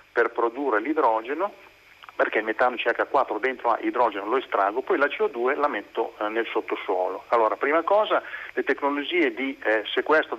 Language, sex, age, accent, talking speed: Italian, male, 40-59, native, 155 wpm